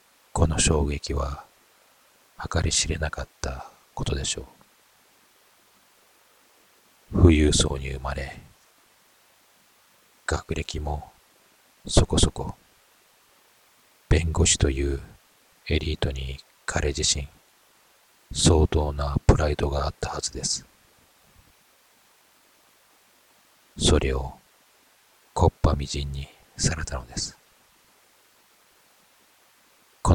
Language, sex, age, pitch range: Japanese, male, 40-59, 70-80 Hz